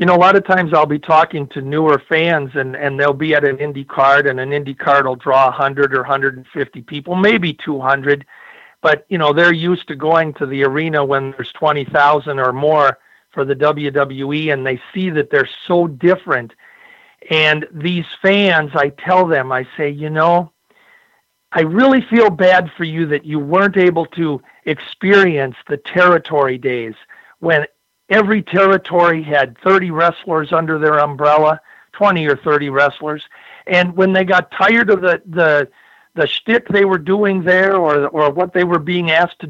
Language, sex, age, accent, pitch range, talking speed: English, male, 50-69, American, 145-180 Hz, 180 wpm